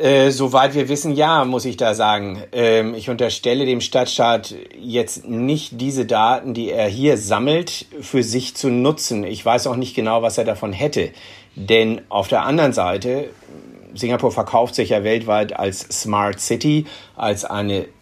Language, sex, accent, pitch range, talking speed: German, male, German, 95-120 Hz, 165 wpm